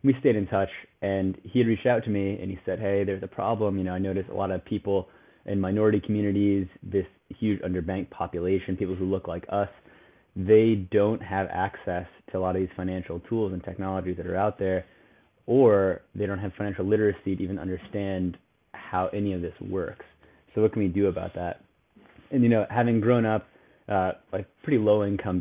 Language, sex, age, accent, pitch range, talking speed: English, male, 30-49, American, 90-105 Hz, 205 wpm